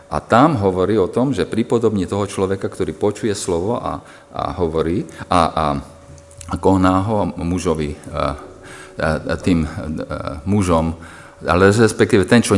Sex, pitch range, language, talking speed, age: male, 80-130 Hz, Slovak, 140 wpm, 50-69